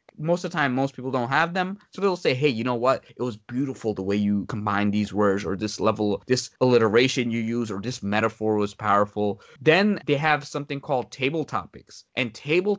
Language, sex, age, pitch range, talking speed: English, male, 20-39, 115-160 Hz, 215 wpm